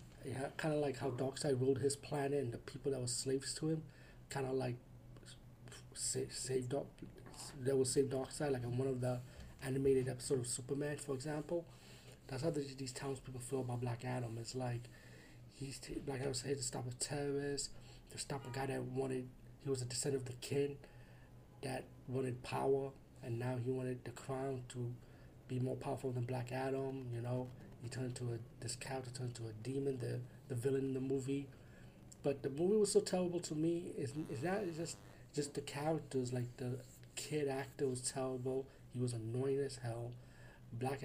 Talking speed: 190 wpm